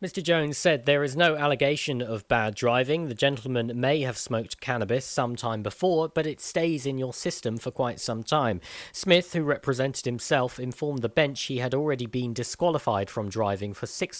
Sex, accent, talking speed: male, British, 185 wpm